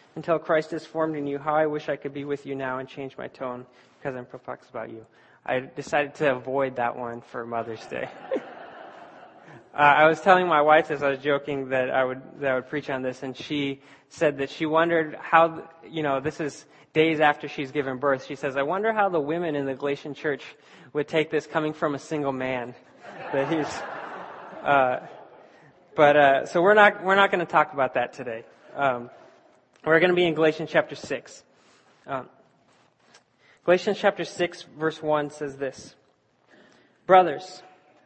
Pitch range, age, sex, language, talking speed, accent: 135-165 Hz, 20-39, male, English, 190 wpm, American